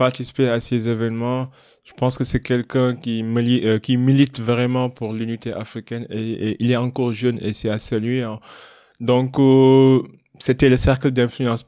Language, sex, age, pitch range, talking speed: French, male, 20-39, 115-130 Hz, 185 wpm